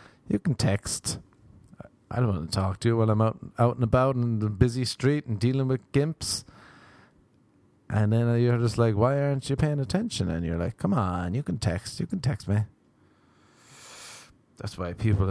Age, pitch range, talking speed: 30-49, 100-130 Hz, 190 wpm